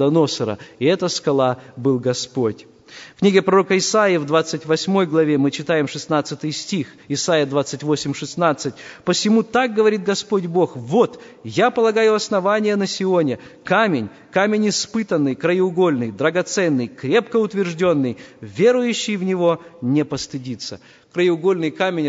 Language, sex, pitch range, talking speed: Russian, male, 150-210 Hz, 120 wpm